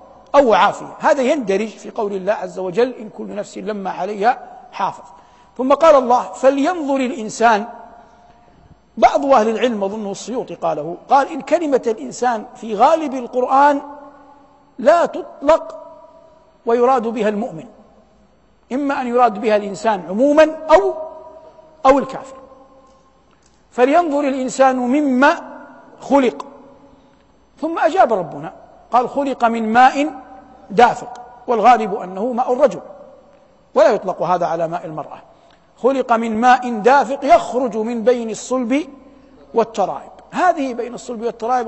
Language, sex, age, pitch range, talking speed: Arabic, male, 60-79, 225-280 Hz, 120 wpm